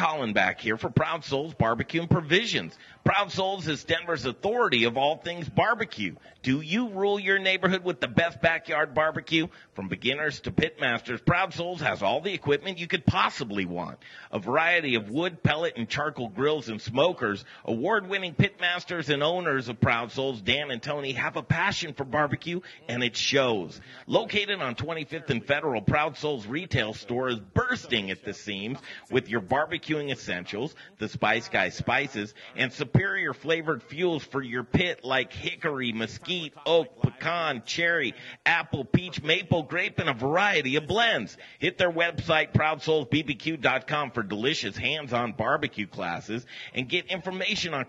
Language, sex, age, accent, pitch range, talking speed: English, male, 40-59, American, 130-170 Hz, 160 wpm